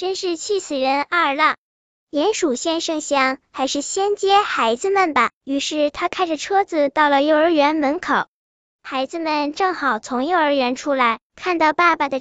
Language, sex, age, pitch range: Chinese, male, 10-29, 275-360 Hz